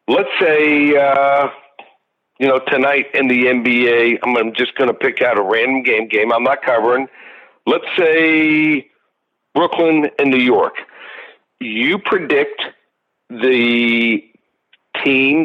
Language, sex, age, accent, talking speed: English, male, 50-69, American, 125 wpm